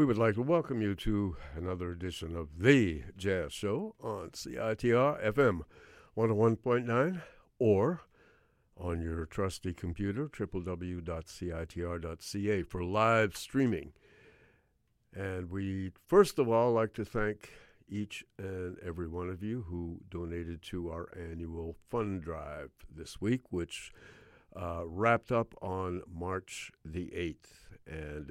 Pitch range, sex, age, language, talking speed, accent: 85-110 Hz, male, 60-79, English, 125 wpm, American